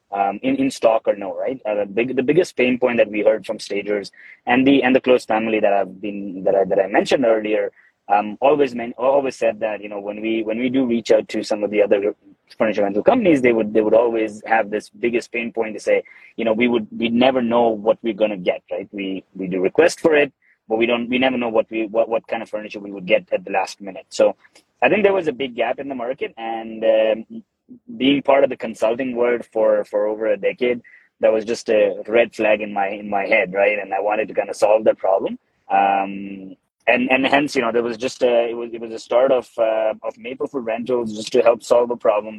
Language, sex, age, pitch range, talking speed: English, male, 20-39, 110-130 Hz, 260 wpm